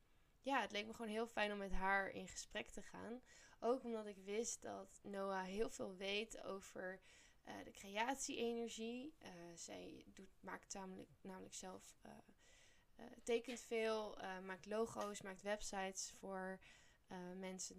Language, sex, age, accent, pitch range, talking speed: Dutch, female, 10-29, Dutch, 185-225 Hz, 145 wpm